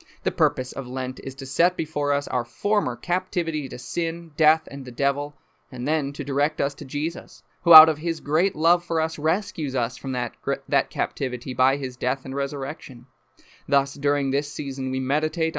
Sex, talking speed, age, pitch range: male, 195 wpm, 20-39, 135-175 Hz